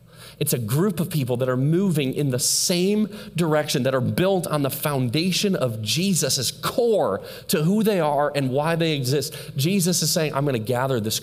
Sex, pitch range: male, 115-150 Hz